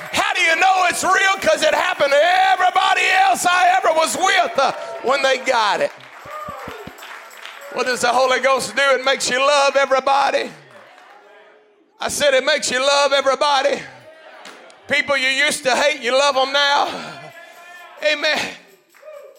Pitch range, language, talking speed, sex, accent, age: 260-325 Hz, English, 150 wpm, male, American, 40-59